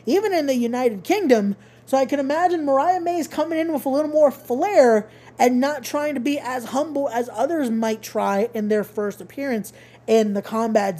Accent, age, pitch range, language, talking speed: American, 20-39, 220-285 Hz, English, 195 wpm